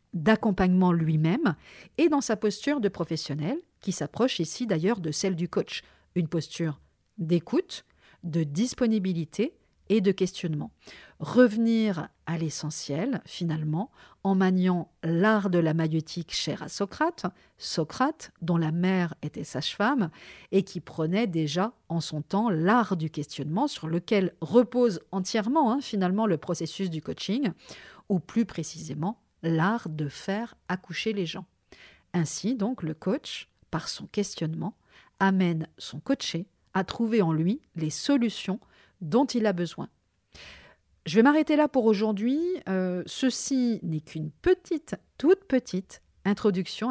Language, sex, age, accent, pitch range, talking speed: French, female, 50-69, French, 165-220 Hz, 135 wpm